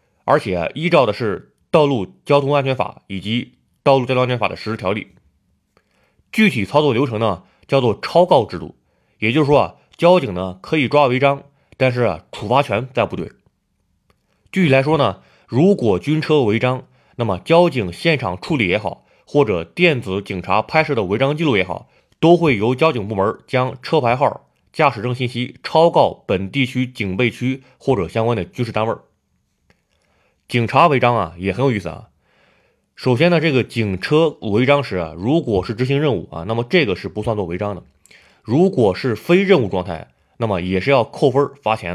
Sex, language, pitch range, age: male, Chinese, 100-140 Hz, 20-39